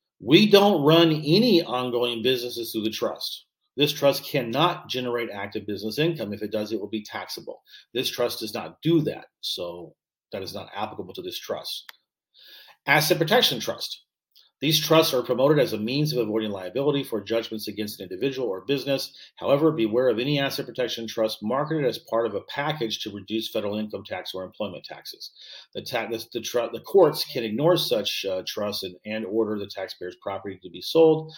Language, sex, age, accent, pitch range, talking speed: English, male, 40-59, American, 105-145 Hz, 180 wpm